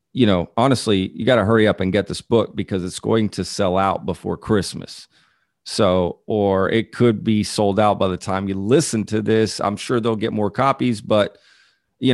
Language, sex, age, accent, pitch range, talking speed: English, male, 40-59, American, 105-135 Hz, 210 wpm